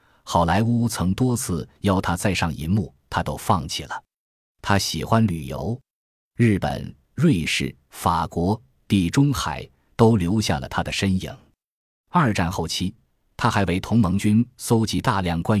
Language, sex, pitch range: Chinese, male, 85-110 Hz